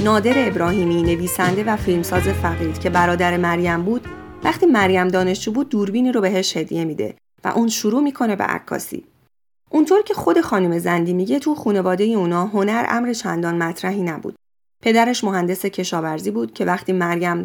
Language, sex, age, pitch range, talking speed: Persian, female, 30-49, 175-230 Hz, 160 wpm